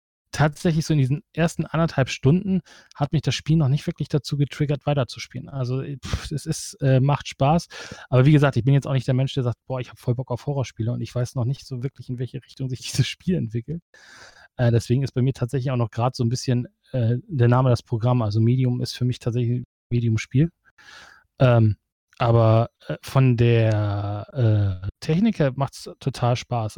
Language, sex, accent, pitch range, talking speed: German, male, German, 120-135 Hz, 200 wpm